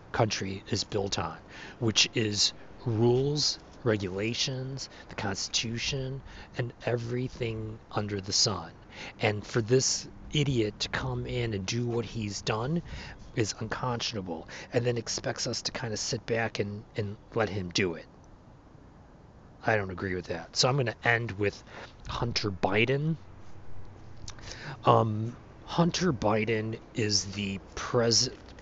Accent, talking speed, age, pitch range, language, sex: American, 130 wpm, 40-59, 105-130 Hz, English, male